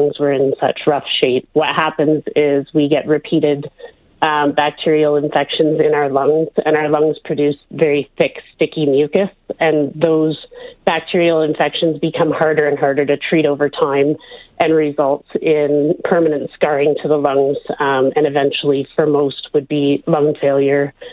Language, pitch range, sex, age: English, 145-160 Hz, female, 30-49